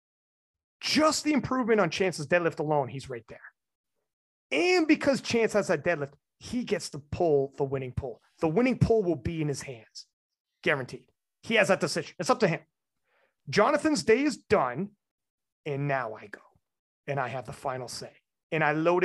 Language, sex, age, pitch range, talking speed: English, male, 30-49, 145-195 Hz, 180 wpm